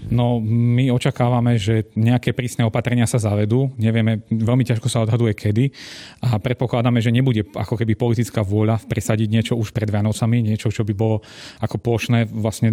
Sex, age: male, 30-49